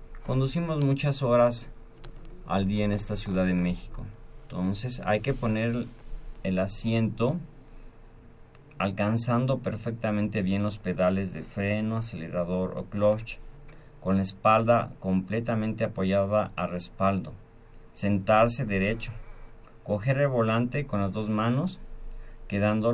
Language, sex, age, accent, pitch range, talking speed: Spanish, male, 40-59, Mexican, 100-120 Hz, 110 wpm